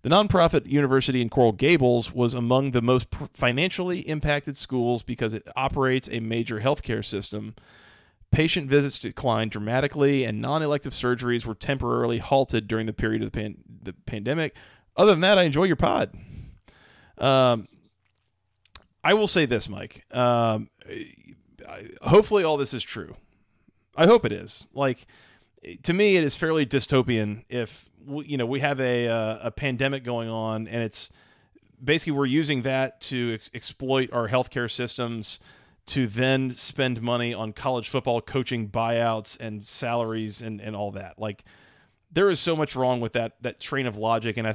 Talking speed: 165 wpm